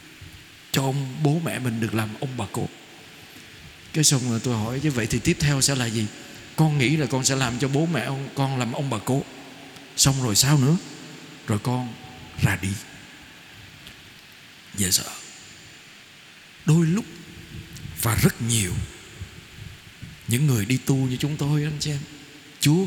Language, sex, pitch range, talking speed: Vietnamese, male, 120-155 Hz, 165 wpm